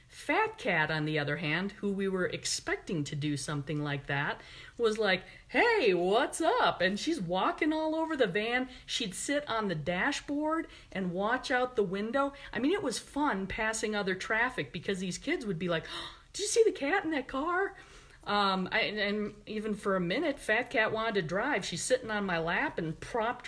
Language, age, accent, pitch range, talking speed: English, 50-69, American, 180-260 Hz, 195 wpm